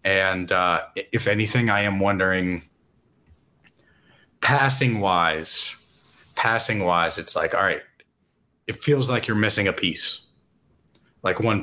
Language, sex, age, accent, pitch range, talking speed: English, male, 30-49, American, 100-120 Hz, 125 wpm